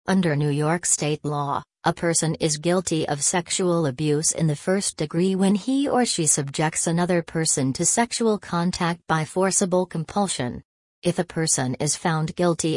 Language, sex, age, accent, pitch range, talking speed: English, female, 40-59, American, 150-180 Hz, 165 wpm